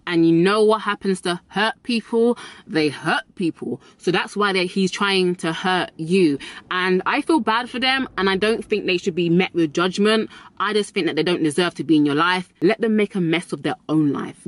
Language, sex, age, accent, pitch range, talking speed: English, female, 20-39, British, 160-215 Hz, 230 wpm